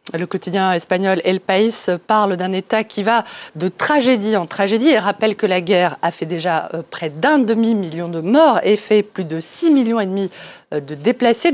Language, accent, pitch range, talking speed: French, French, 175-230 Hz, 190 wpm